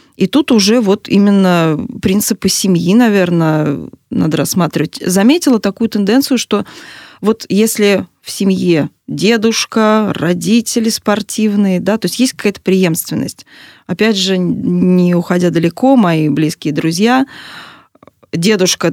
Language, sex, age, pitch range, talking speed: Russian, female, 20-39, 175-245 Hz, 115 wpm